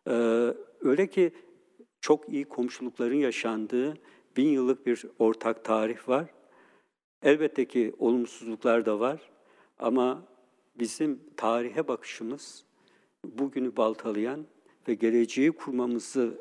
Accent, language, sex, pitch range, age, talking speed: native, Turkish, male, 115-145 Hz, 60-79, 95 wpm